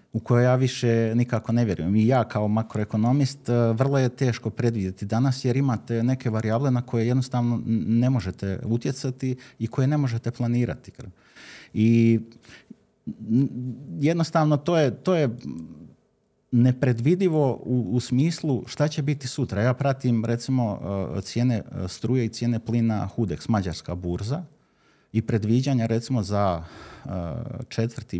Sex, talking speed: male, 130 wpm